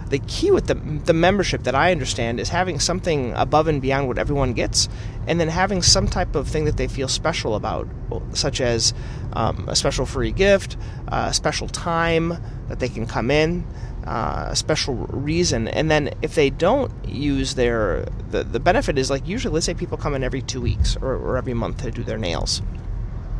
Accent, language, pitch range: American, English, 115-150 Hz